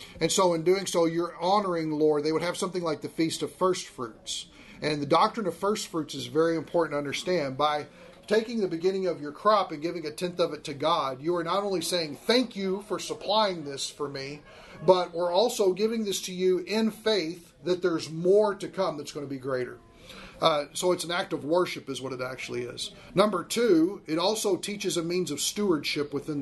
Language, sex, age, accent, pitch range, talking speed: English, male, 40-59, American, 150-185 Hz, 225 wpm